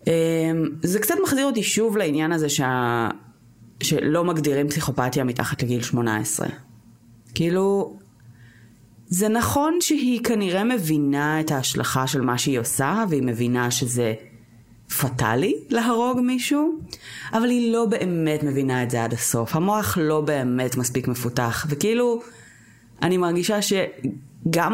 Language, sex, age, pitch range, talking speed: Hebrew, female, 30-49, 125-185 Hz, 125 wpm